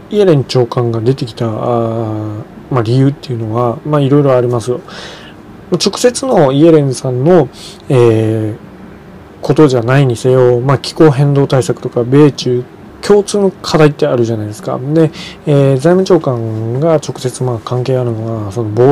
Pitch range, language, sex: 120-160 Hz, Japanese, male